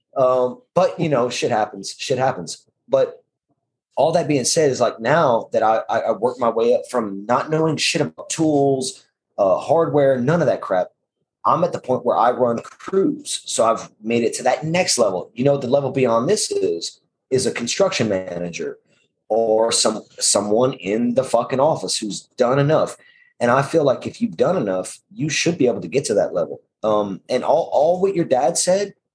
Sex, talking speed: male, 200 wpm